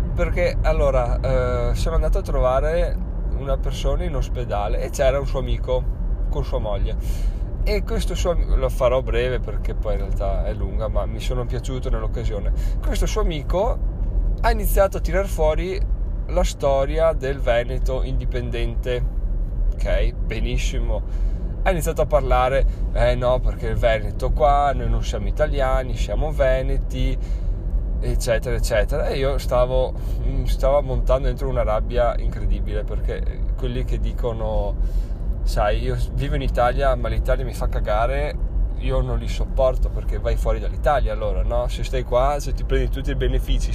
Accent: native